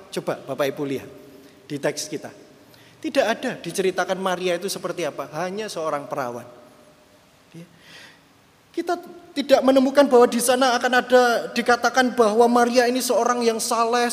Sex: male